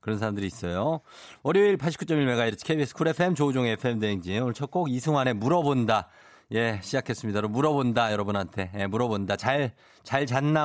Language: Korean